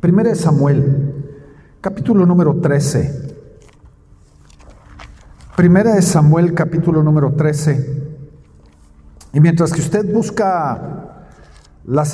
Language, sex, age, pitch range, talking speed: Spanish, male, 50-69, 155-220 Hz, 90 wpm